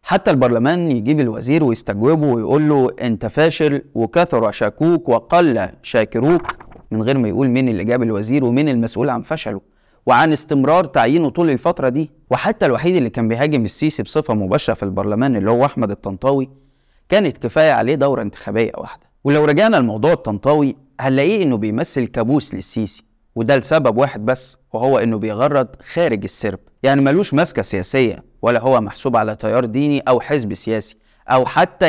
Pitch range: 110-145 Hz